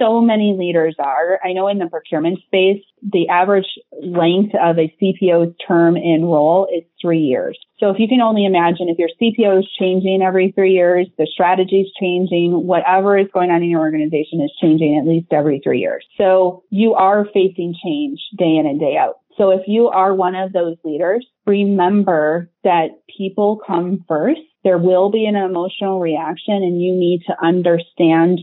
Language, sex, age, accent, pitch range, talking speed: English, female, 30-49, American, 170-195 Hz, 185 wpm